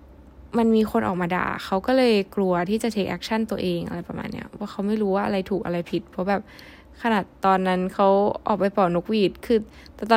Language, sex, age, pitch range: Thai, female, 10-29, 180-230 Hz